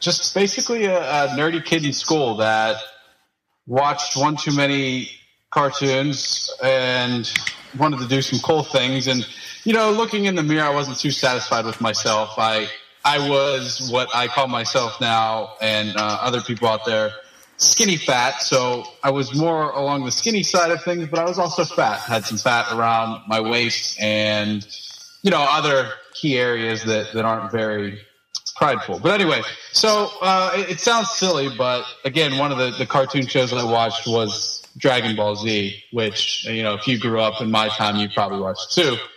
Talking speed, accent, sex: 180 wpm, American, male